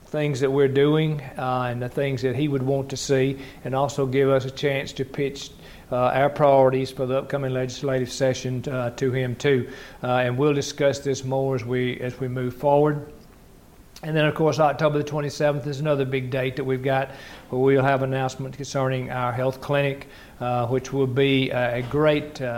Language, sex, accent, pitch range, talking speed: English, male, American, 130-145 Hz, 200 wpm